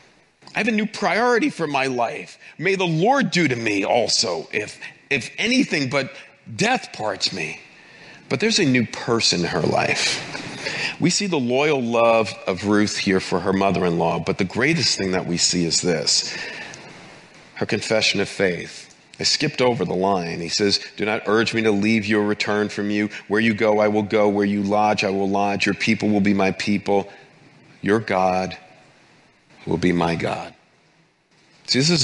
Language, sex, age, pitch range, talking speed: English, male, 40-59, 105-140 Hz, 185 wpm